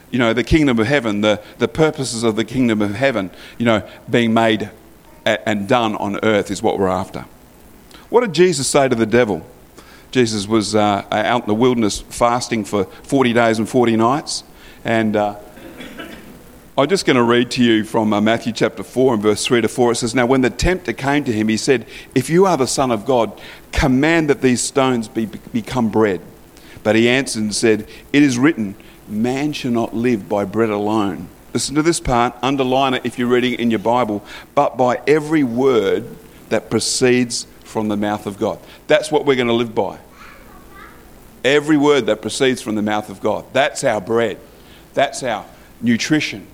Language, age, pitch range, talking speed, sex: English, 50-69, 110-130 Hz, 195 wpm, male